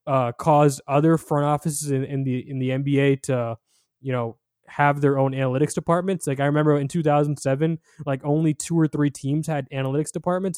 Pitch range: 130-155 Hz